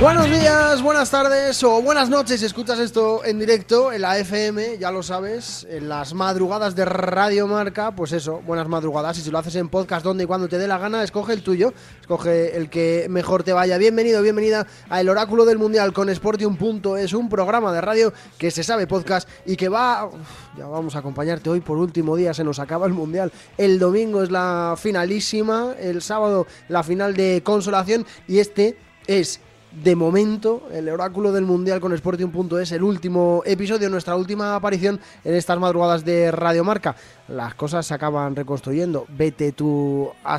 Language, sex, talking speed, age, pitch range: Spanish, male, 185 wpm, 20-39, 170-210 Hz